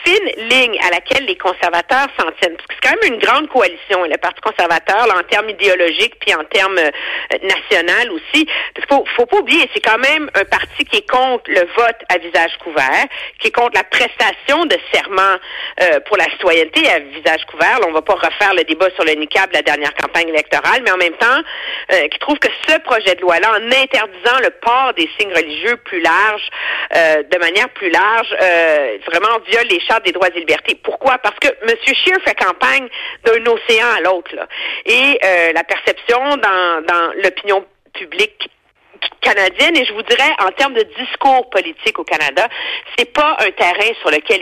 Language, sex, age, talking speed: French, female, 50-69, 200 wpm